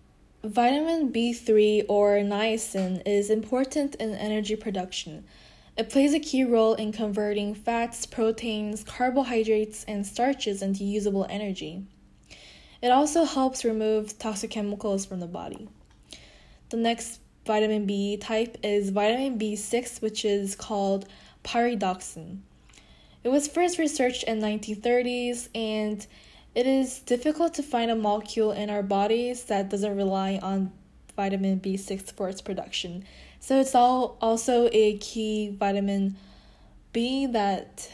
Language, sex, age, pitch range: Korean, female, 10-29, 200-235 Hz